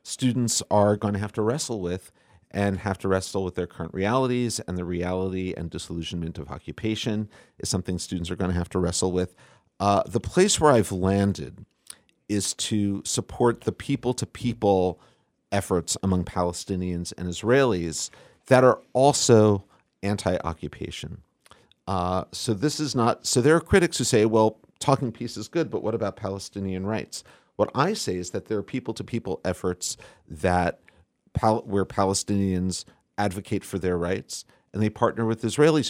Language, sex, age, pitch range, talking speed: English, male, 40-59, 90-110 Hz, 155 wpm